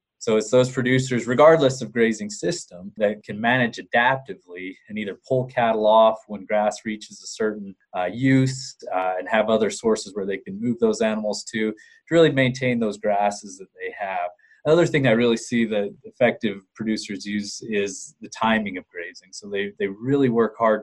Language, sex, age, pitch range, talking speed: English, male, 20-39, 105-125 Hz, 185 wpm